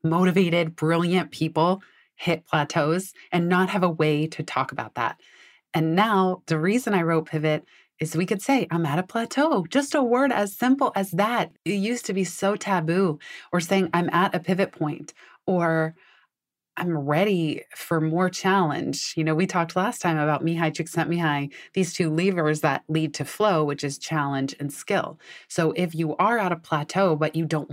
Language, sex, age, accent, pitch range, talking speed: English, female, 30-49, American, 155-190 Hz, 185 wpm